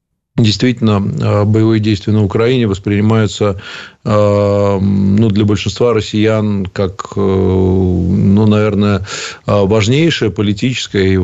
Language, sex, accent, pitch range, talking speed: Russian, male, native, 95-110 Hz, 80 wpm